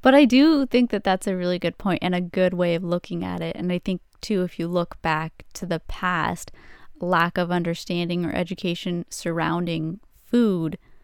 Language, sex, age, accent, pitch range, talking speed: English, female, 20-39, American, 175-205 Hz, 195 wpm